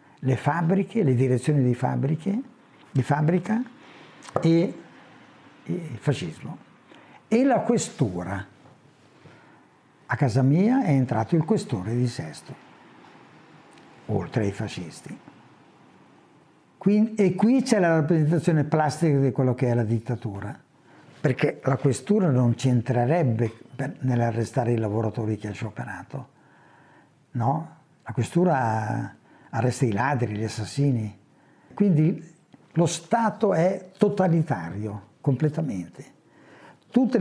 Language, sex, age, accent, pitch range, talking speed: Italian, male, 60-79, native, 125-175 Hz, 110 wpm